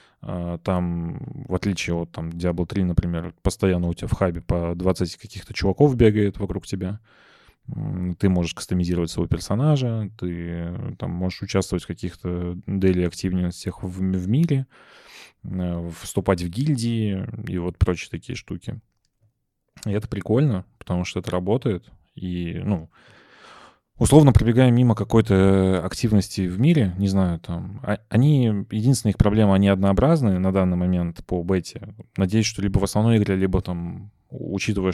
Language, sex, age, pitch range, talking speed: Russian, male, 20-39, 90-110 Hz, 145 wpm